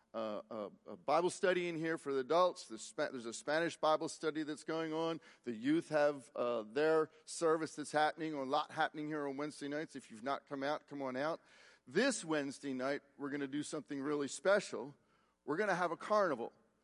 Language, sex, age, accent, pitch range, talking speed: English, male, 50-69, American, 130-170 Hz, 200 wpm